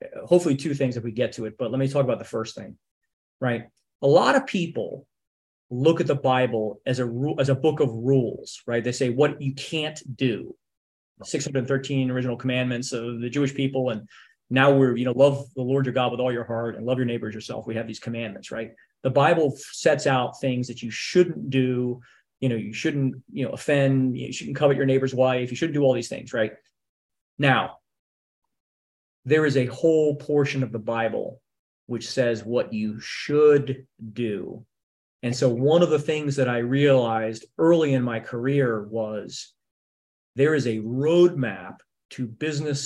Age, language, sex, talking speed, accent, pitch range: 30-49, English, male, 190 wpm, American, 115-140 Hz